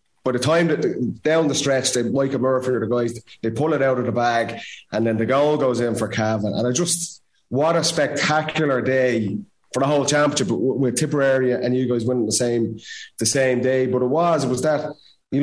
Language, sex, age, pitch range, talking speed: English, male, 30-49, 125-150 Hz, 230 wpm